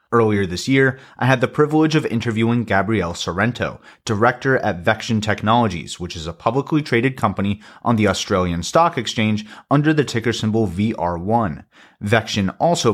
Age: 30-49